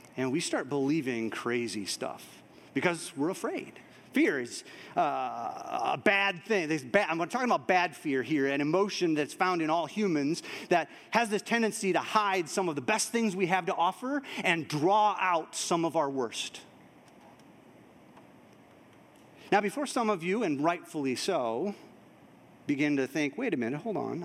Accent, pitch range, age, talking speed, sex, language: American, 145-205 Hz, 40-59, 165 wpm, male, English